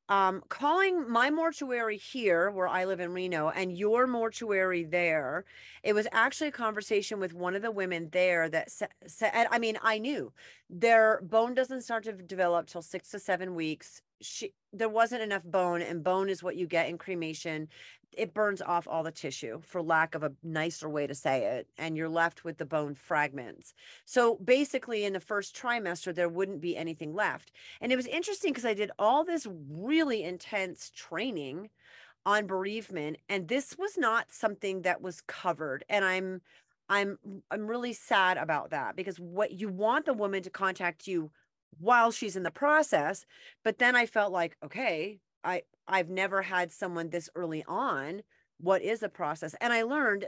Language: English